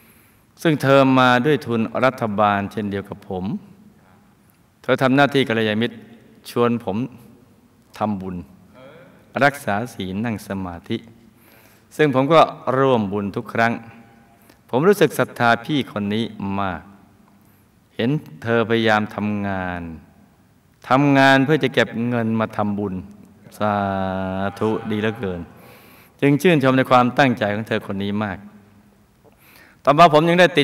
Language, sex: Thai, male